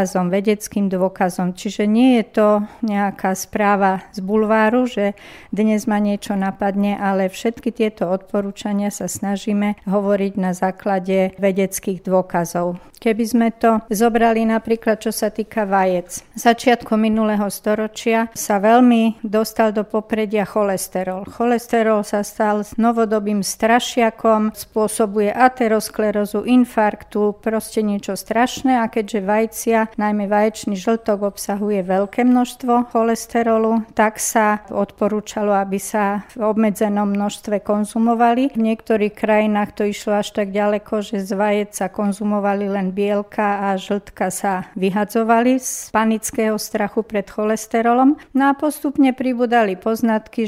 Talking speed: 120 wpm